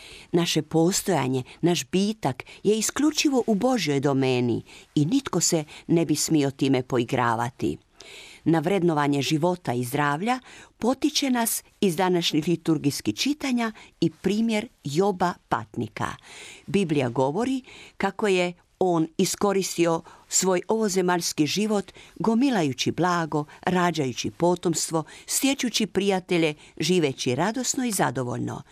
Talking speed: 105 wpm